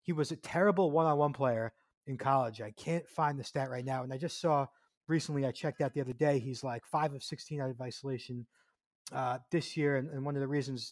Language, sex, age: English, male, 30-49